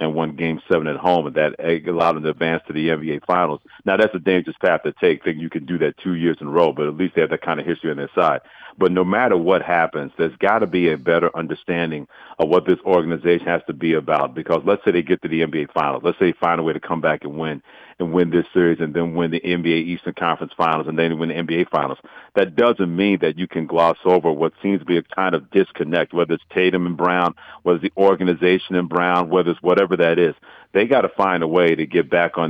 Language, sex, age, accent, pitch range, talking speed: English, male, 50-69, American, 85-95 Hz, 265 wpm